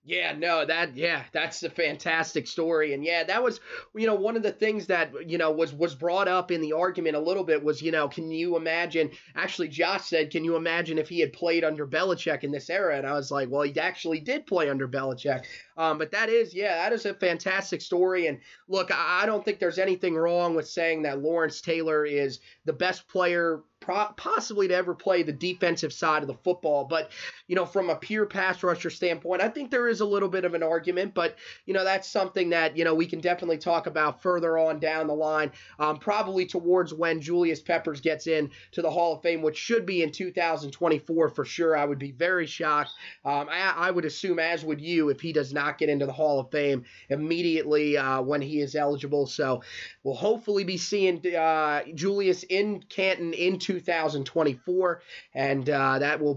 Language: English